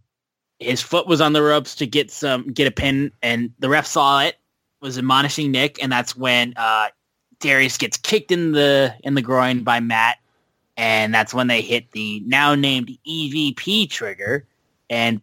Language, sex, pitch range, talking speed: English, male, 115-145 Hz, 175 wpm